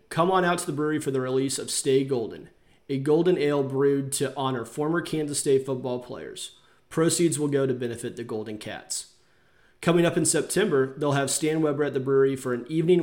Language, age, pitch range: English, 30-49, 130-155 Hz